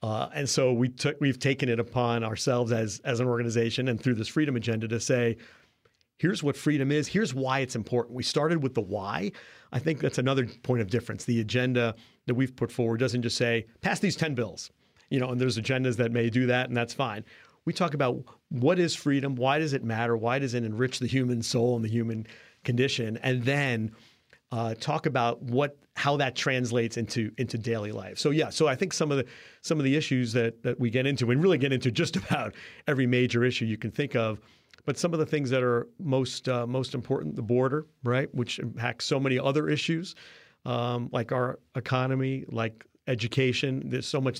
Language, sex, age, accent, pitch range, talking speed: English, male, 40-59, American, 115-135 Hz, 220 wpm